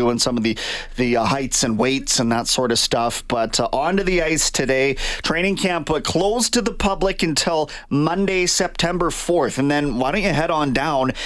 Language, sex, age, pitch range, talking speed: English, male, 30-49, 125-155 Hz, 210 wpm